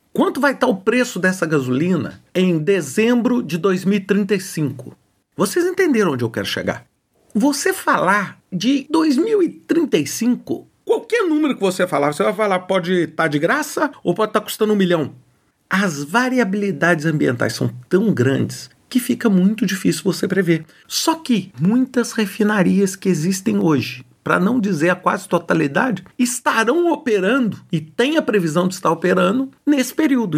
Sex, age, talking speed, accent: male, 40-59, 150 wpm, Brazilian